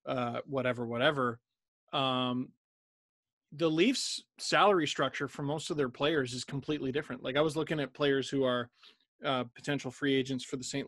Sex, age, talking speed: male, 20-39, 170 wpm